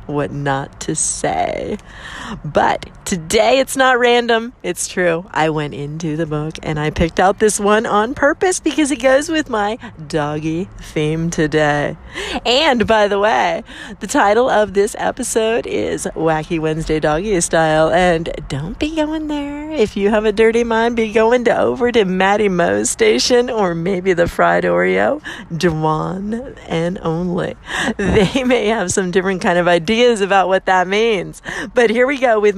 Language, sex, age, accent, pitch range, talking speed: English, female, 40-59, American, 155-220 Hz, 165 wpm